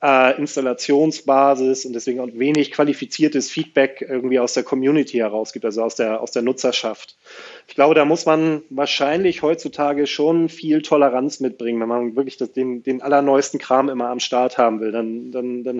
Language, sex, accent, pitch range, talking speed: German, male, German, 125-150 Hz, 165 wpm